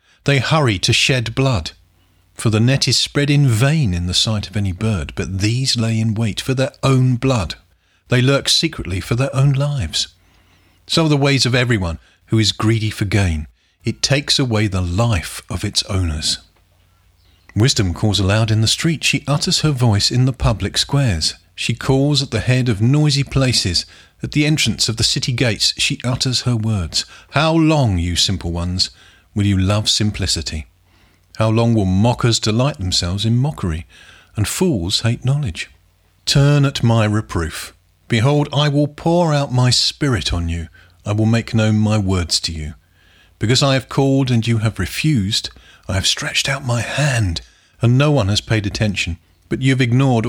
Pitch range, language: 90-130 Hz, English